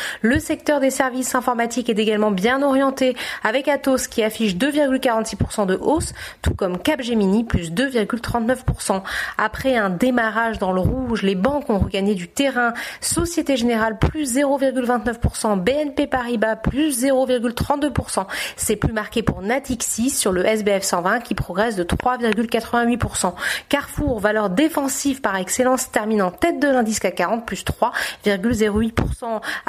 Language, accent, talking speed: French, French, 130 wpm